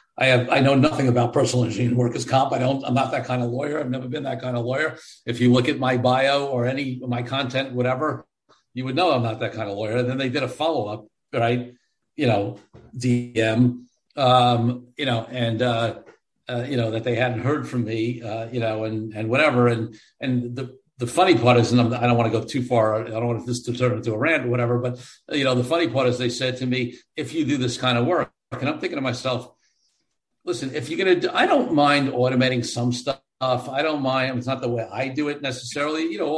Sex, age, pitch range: male, 50-69, 120-140 Hz